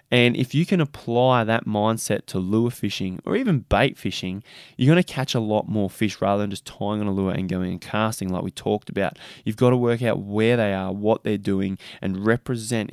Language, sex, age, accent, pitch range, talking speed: English, male, 20-39, Australian, 95-120 Hz, 230 wpm